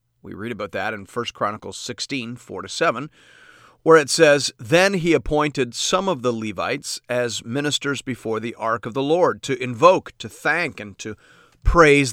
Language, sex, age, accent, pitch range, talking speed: English, male, 40-59, American, 115-150 Hz, 170 wpm